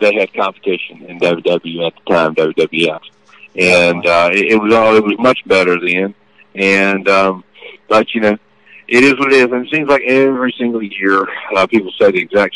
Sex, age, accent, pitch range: male, 50-69, American, 90-110 Hz